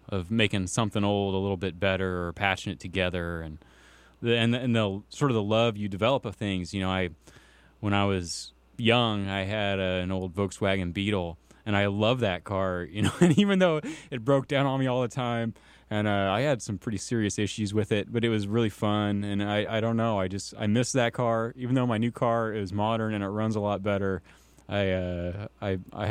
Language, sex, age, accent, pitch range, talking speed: English, male, 20-39, American, 95-115 Hz, 230 wpm